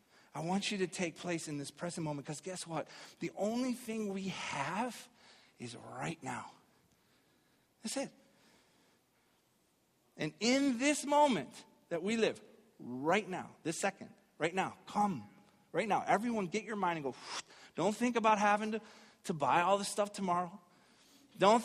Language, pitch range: English, 150-210 Hz